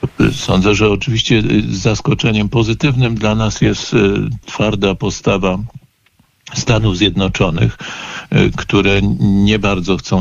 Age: 50-69